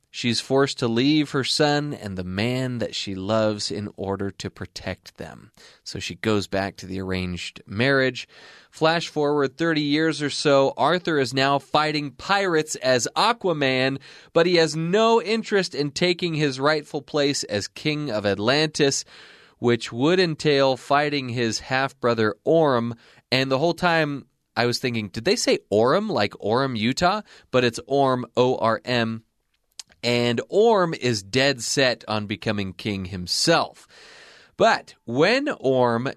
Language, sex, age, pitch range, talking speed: English, male, 30-49, 110-145 Hz, 150 wpm